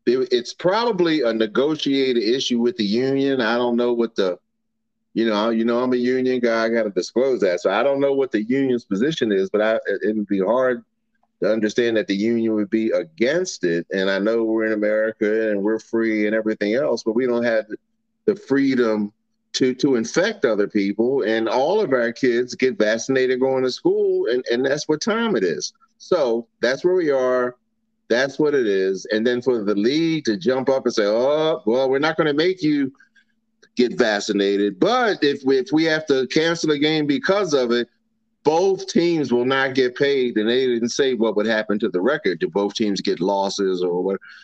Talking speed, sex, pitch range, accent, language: 210 wpm, male, 110-165 Hz, American, English